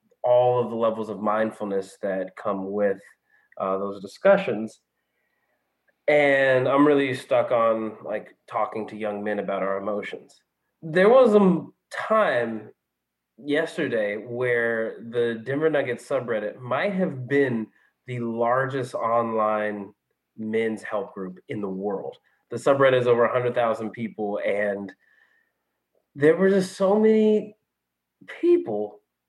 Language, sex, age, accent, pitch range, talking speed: English, male, 30-49, American, 105-145 Hz, 125 wpm